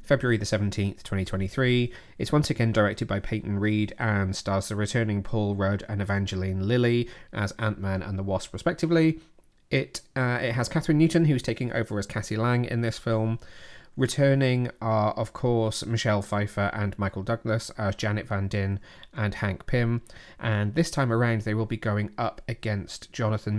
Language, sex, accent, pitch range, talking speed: English, male, British, 105-120 Hz, 175 wpm